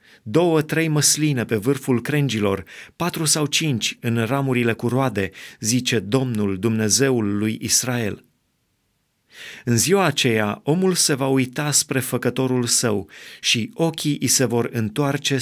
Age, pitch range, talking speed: 30-49, 115-140 Hz, 130 wpm